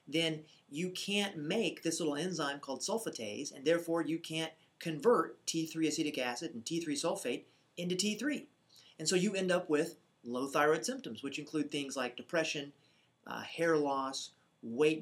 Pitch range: 140-165 Hz